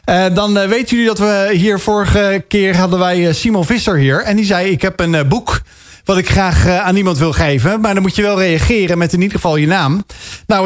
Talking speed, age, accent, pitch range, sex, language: 250 wpm, 40-59, Dutch, 160-205 Hz, male, Dutch